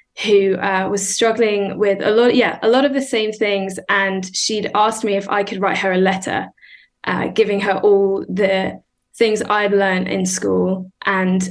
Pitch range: 195-230 Hz